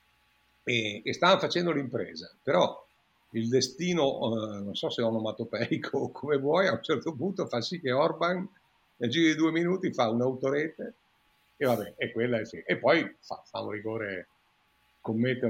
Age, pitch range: 50-69, 115-135 Hz